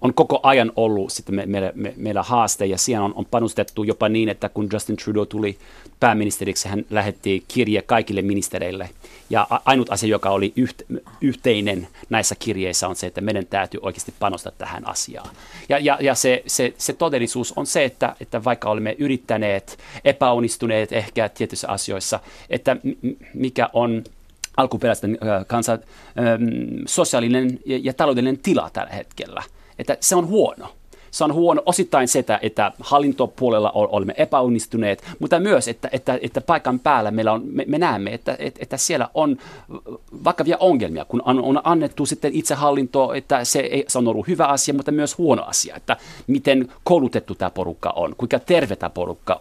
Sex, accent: male, native